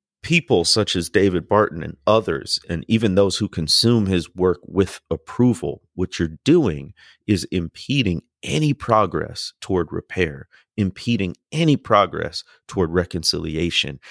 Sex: male